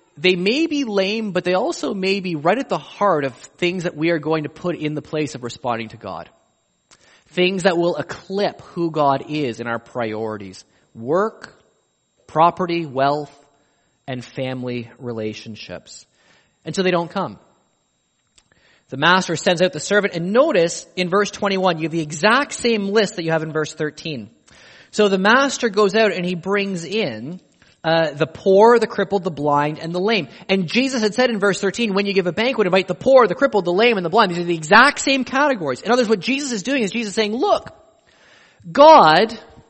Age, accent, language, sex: 30-49, American, English, male